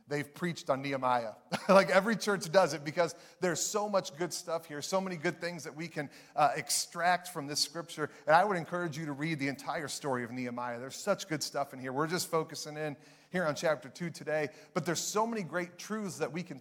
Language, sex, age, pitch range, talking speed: English, male, 30-49, 145-180 Hz, 230 wpm